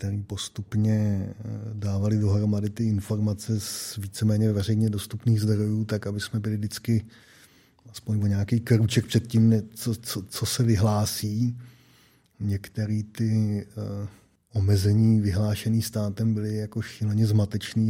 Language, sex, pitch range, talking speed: Czech, male, 105-110 Hz, 115 wpm